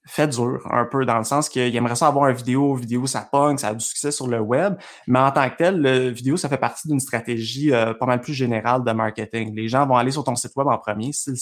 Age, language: 20-39, French